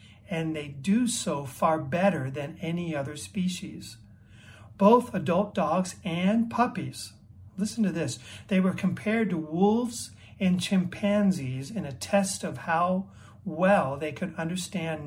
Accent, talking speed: American, 135 wpm